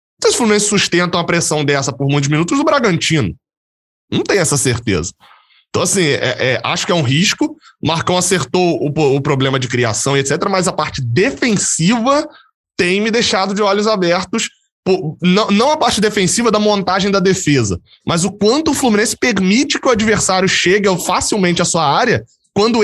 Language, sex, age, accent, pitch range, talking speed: Portuguese, male, 20-39, Brazilian, 140-215 Hz, 185 wpm